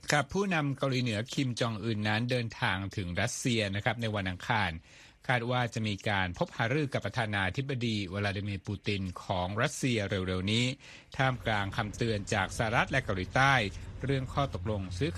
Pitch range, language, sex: 95-125 Hz, Thai, male